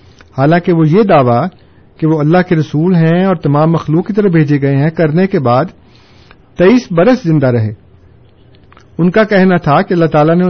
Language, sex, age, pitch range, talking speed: Urdu, male, 50-69, 120-190 Hz, 190 wpm